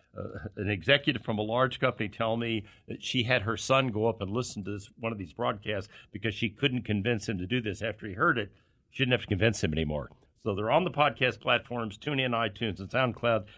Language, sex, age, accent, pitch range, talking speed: English, male, 60-79, American, 105-135 Hz, 235 wpm